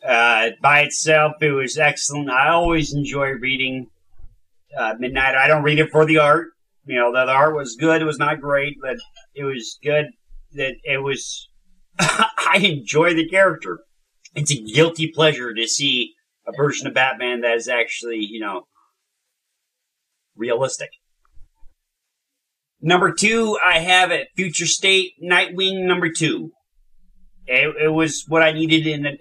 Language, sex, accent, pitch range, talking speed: English, male, American, 135-165 Hz, 150 wpm